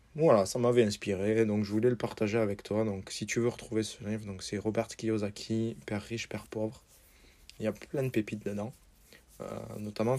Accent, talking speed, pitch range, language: French, 205 wpm, 100-115 Hz, French